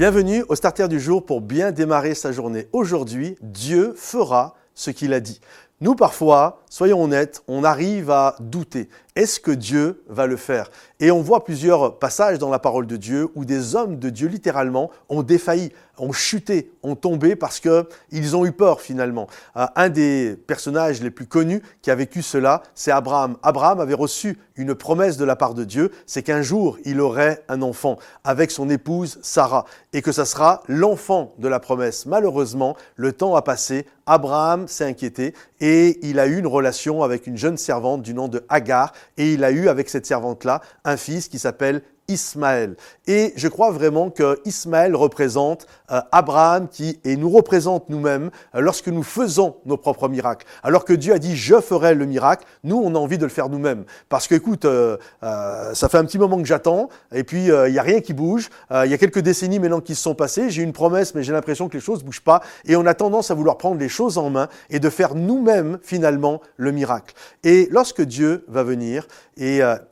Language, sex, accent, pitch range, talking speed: French, male, French, 135-175 Hz, 210 wpm